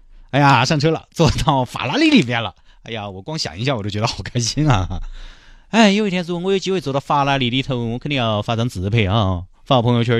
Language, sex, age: Chinese, male, 30-49